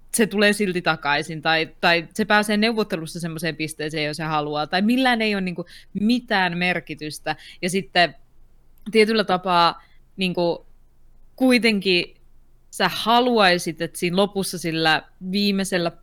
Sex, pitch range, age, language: female, 160-205 Hz, 20-39, Finnish